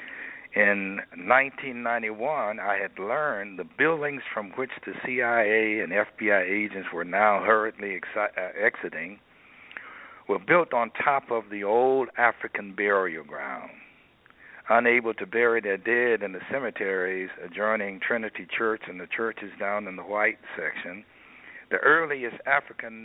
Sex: male